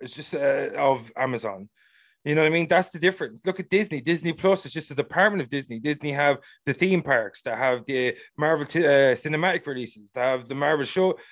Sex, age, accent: male, 30-49, Irish